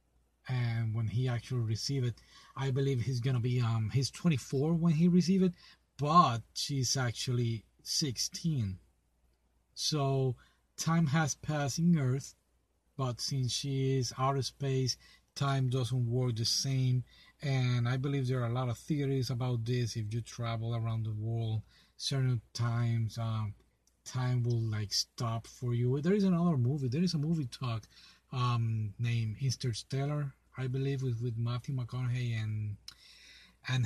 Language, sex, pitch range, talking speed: English, male, 110-135 Hz, 150 wpm